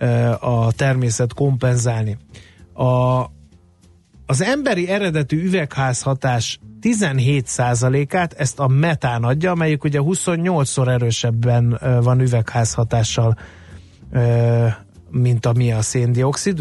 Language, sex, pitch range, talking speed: Hungarian, male, 115-135 Hz, 85 wpm